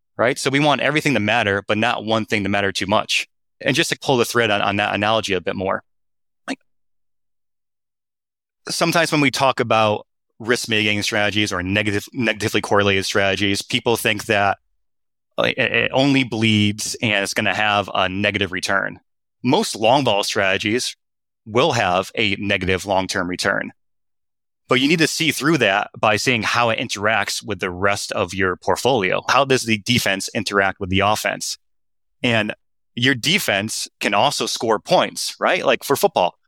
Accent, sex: American, male